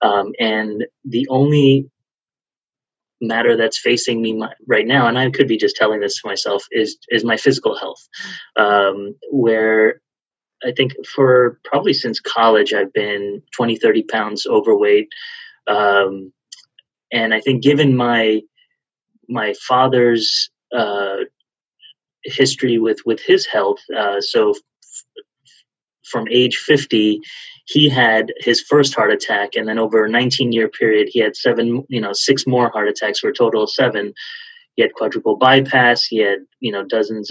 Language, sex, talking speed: English, male, 155 wpm